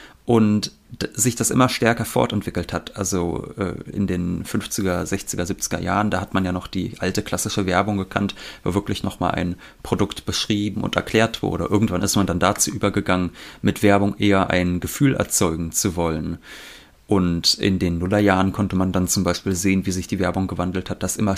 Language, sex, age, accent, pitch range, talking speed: German, male, 30-49, German, 90-110 Hz, 180 wpm